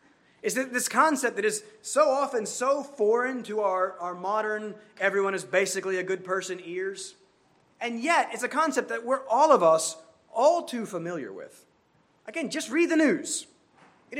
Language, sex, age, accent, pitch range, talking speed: English, male, 30-49, American, 185-255 Hz, 175 wpm